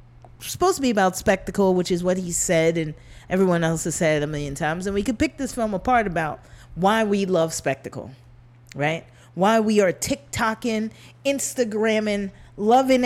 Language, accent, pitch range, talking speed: English, American, 140-205 Hz, 185 wpm